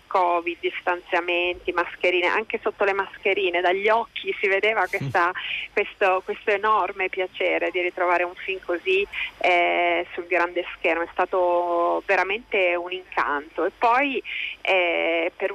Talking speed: 125 wpm